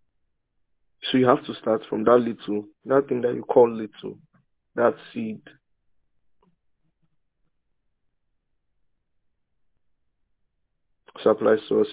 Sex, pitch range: male, 105-150 Hz